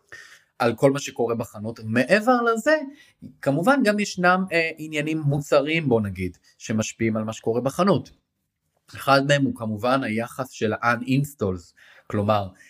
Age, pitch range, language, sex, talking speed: 30-49, 110-140 Hz, Hebrew, male, 130 wpm